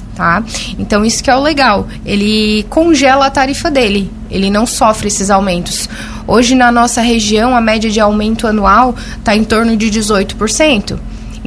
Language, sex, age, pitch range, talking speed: Portuguese, female, 20-39, 220-275 Hz, 160 wpm